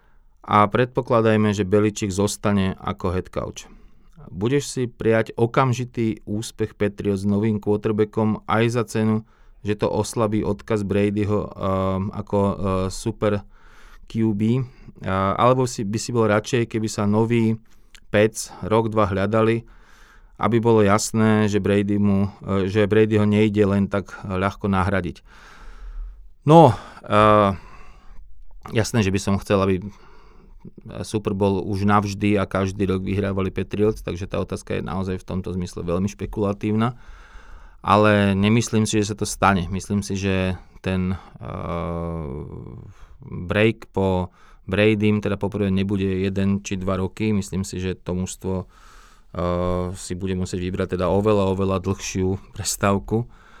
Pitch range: 95-110 Hz